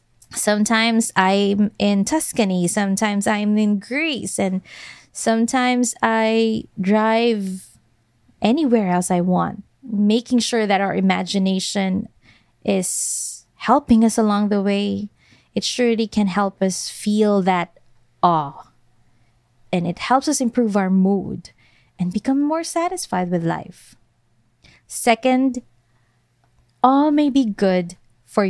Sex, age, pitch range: female, 20-39, 185-235 Hz